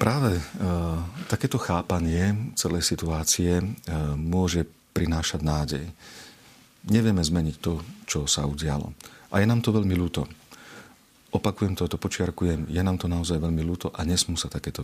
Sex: male